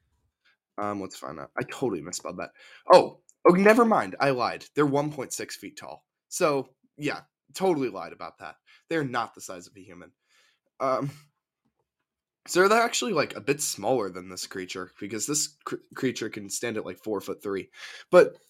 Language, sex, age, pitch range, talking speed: English, male, 10-29, 105-170 Hz, 185 wpm